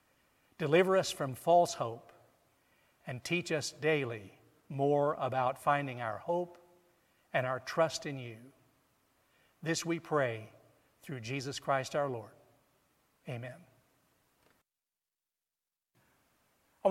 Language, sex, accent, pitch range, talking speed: English, male, American, 135-165 Hz, 105 wpm